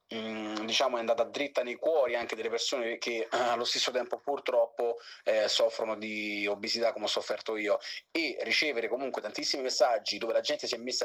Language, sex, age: Italian, male, 30-49